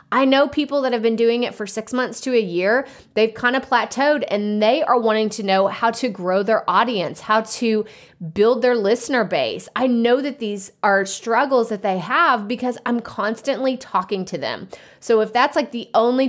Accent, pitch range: American, 200-260 Hz